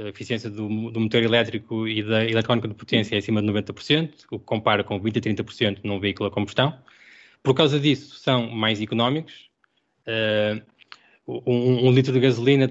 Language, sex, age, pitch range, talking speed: Portuguese, male, 20-39, 110-135 Hz, 180 wpm